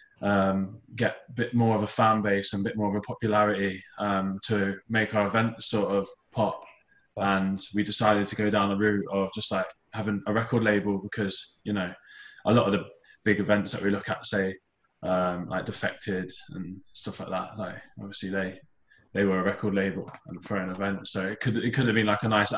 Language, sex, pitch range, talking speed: English, male, 100-115 Hz, 220 wpm